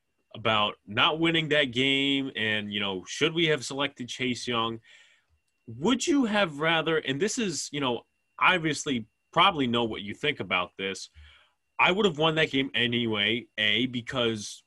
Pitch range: 115-155 Hz